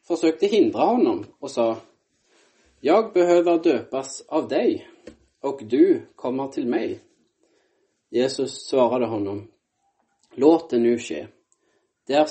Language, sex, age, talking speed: Swedish, male, 30-49, 115 wpm